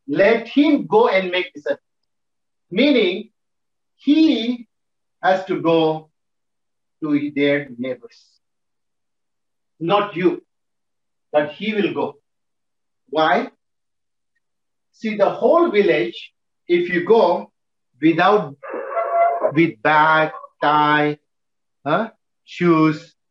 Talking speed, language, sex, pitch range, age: 90 wpm, English, male, 155-235 Hz, 50-69